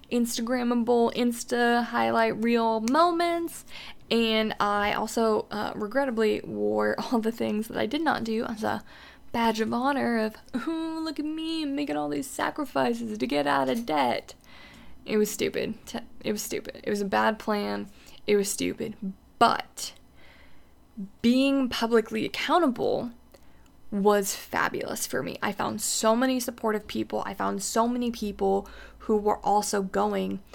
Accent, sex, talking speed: American, female, 145 wpm